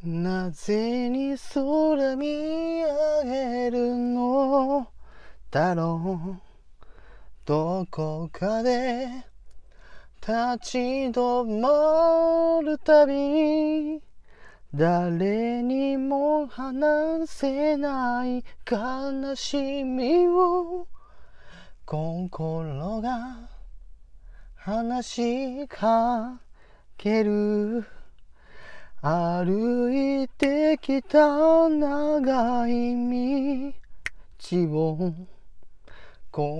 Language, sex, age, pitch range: Japanese, male, 30-49, 220-290 Hz